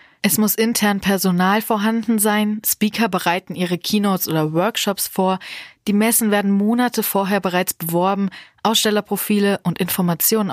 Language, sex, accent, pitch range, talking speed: German, female, German, 185-215 Hz, 130 wpm